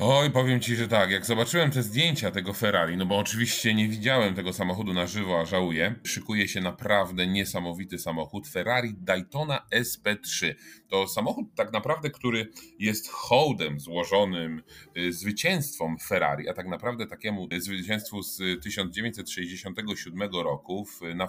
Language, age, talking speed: Polish, 30-49, 140 wpm